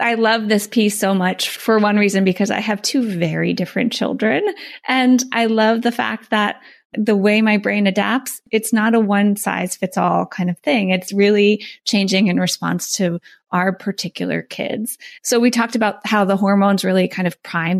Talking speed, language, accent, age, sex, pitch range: 180 wpm, English, American, 20-39, female, 190-235 Hz